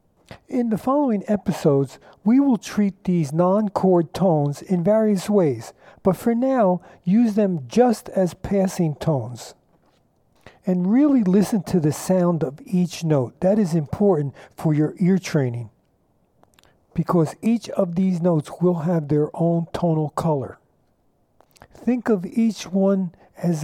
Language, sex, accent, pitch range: English, male, American, 160-205 Hz